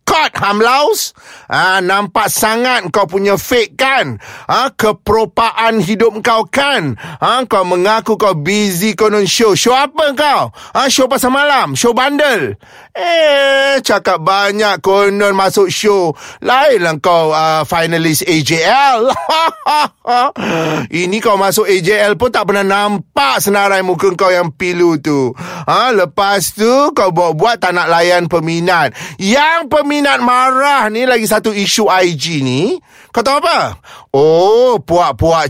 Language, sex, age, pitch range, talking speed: Malay, male, 30-49, 175-235 Hz, 145 wpm